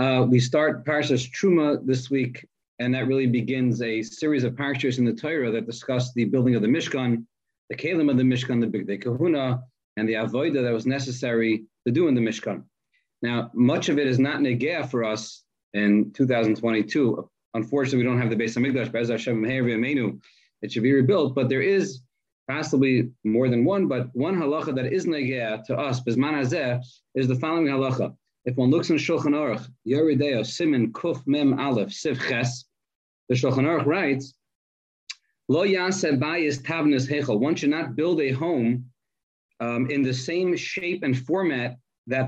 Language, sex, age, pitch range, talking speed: English, male, 30-49, 120-145 Hz, 170 wpm